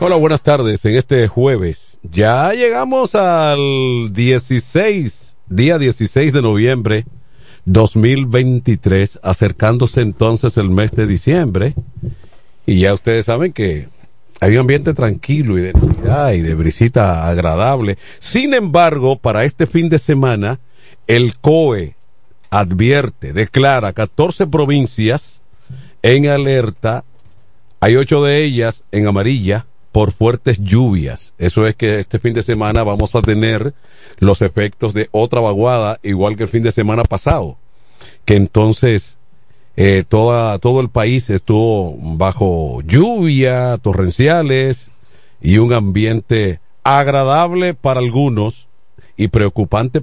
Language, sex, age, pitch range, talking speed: Spanish, male, 50-69, 105-135 Hz, 120 wpm